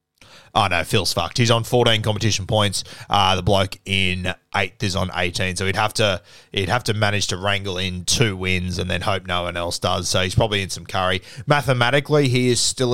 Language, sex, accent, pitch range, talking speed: English, male, Australian, 100-130 Hz, 220 wpm